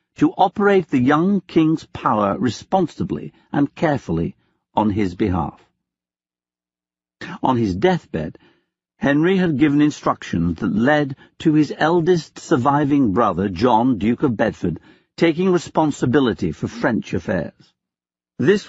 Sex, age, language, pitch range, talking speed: male, 60-79, English, 105-160 Hz, 115 wpm